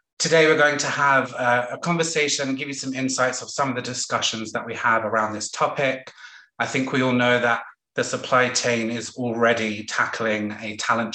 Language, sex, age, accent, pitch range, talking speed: English, male, 30-49, British, 115-140 Hz, 200 wpm